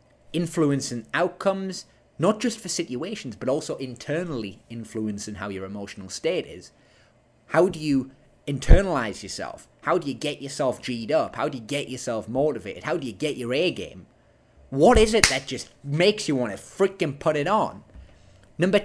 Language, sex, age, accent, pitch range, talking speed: English, male, 20-39, British, 115-175 Hz, 170 wpm